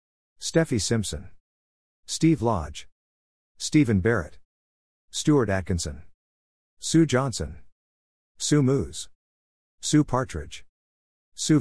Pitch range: 70-110 Hz